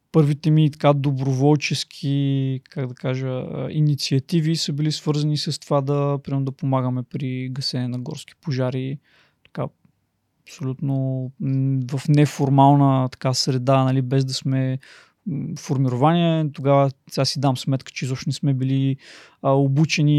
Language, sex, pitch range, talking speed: Bulgarian, male, 130-150 Hz, 130 wpm